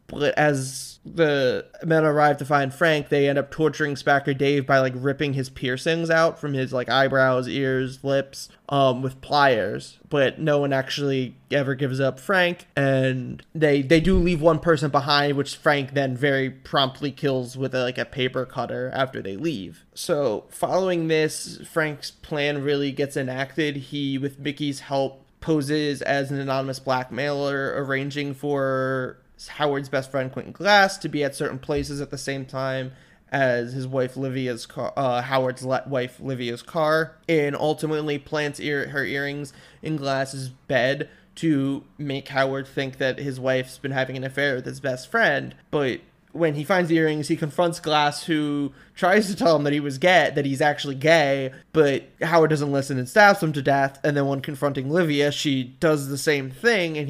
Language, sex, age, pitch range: English, male, 20-39, 135-155 Hz